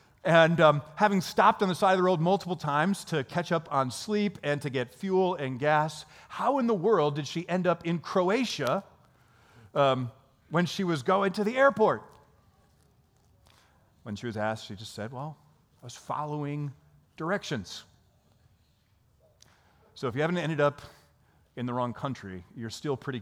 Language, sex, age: English, male, 40-59